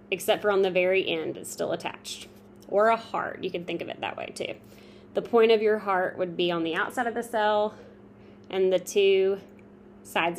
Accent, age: American, 20-39